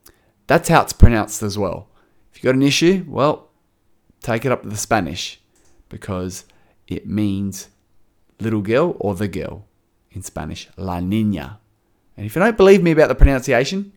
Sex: male